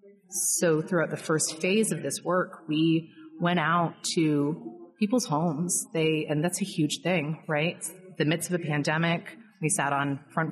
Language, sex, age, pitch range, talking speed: English, female, 30-49, 150-180 Hz, 190 wpm